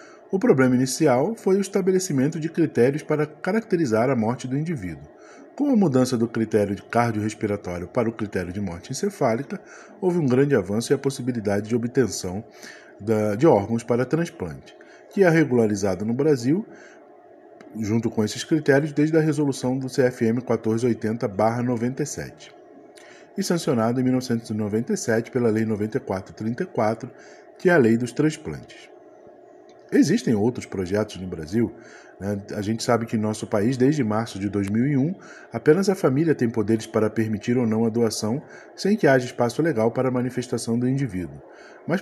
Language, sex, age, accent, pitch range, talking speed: Portuguese, male, 20-39, Brazilian, 110-155 Hz, 150 wpm